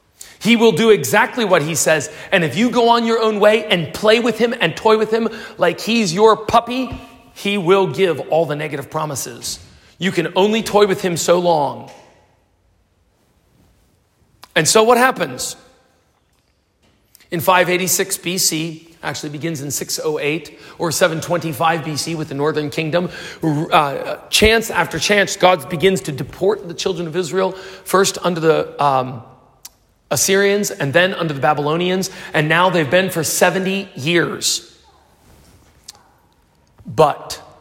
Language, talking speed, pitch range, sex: English, 145 wpm, 155-210 Hz, male